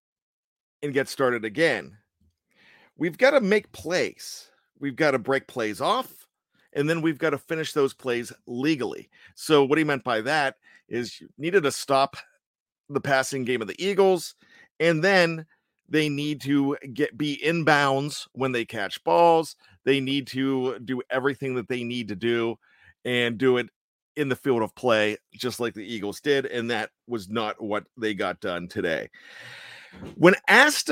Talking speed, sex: 170 wpm, male